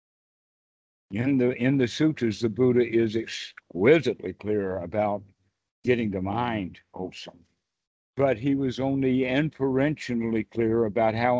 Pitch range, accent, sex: 100-130 Hz, American, male